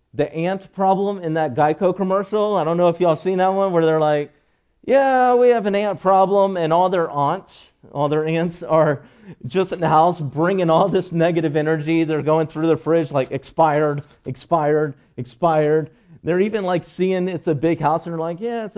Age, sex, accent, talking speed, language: 40-59, male, American, 200 wpm, English